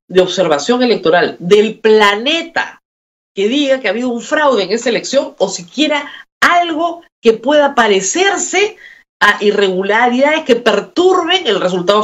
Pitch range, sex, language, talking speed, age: 185-295 Hz, female, Spanish, 135 wpm, 50-69